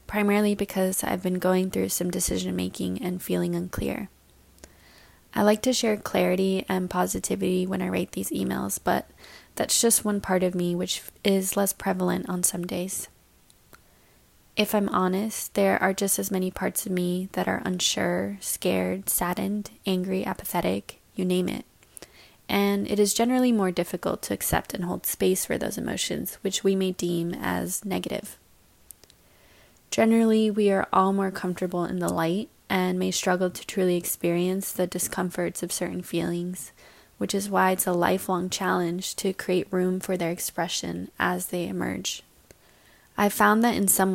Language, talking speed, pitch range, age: English, 160 wpm, 175-195 Hz, 20-39